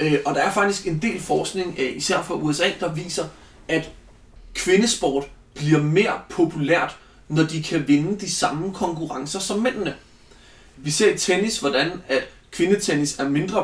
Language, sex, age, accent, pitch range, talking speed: Danish, male, 30-49, native, 145-195 Hz, 160 wpm